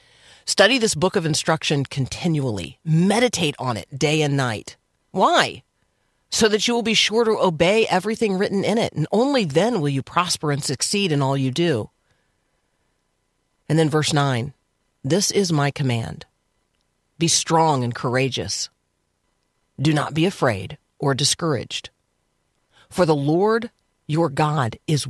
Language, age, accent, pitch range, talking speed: English, 40-59, American, 130-170 Hz, 145 wpm